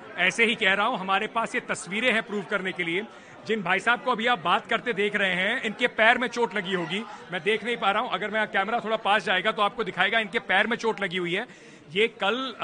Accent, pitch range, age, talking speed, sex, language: native, 185-225 Hz, 40-59, 260 wpm, male, Hindi